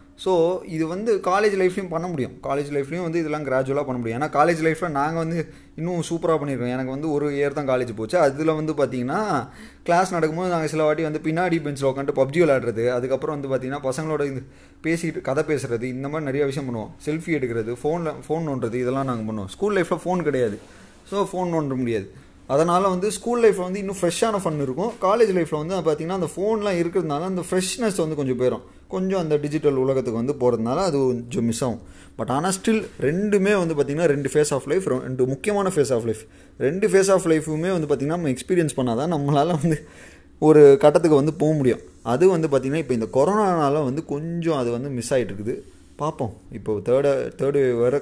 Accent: native